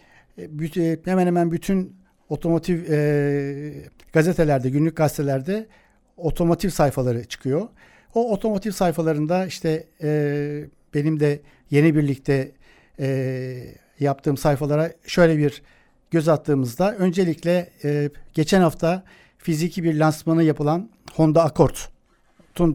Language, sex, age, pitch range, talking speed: Turkish, male, 60-79, 145-170 Hz, 100 wpm